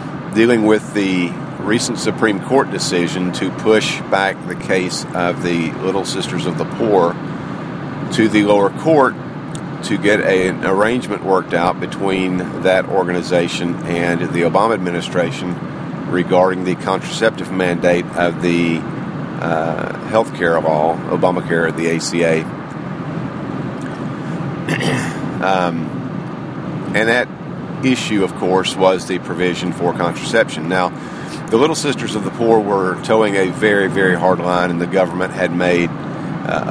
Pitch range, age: 85-105 Hz, 50-69